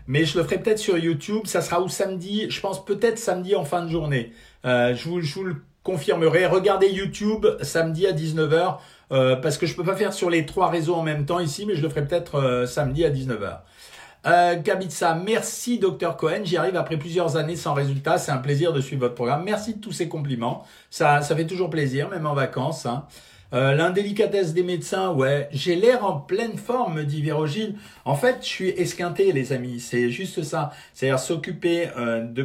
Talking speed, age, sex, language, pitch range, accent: 210 wpm, 50-69, male, French, 140-190 Hz, French